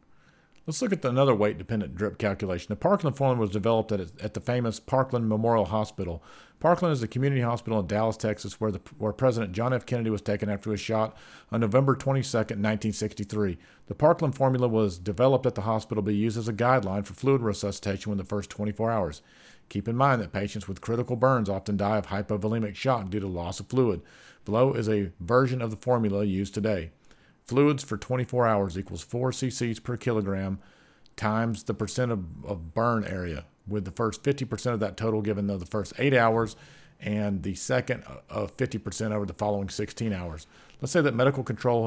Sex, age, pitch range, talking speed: male, 50-69, 105-125 Hz, 195 wpm